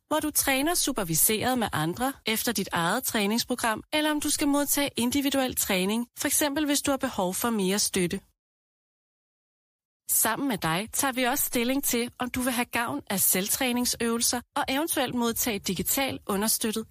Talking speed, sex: 160 wpm, female